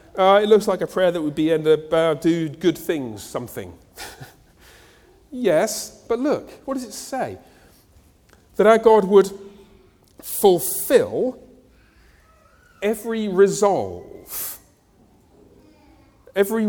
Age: 40-59